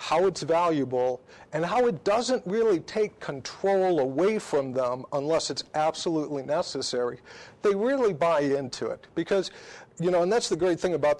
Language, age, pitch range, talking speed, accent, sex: English, 50-69, 135-185 Hz, 165 wpm, American, male